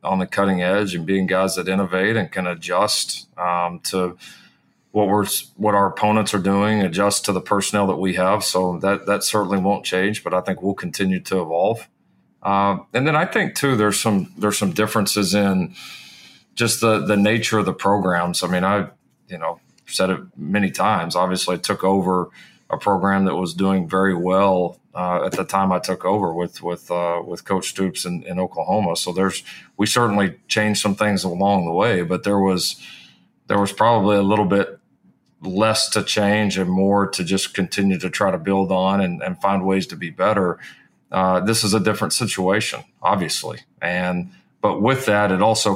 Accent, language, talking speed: American, English, 195 wpm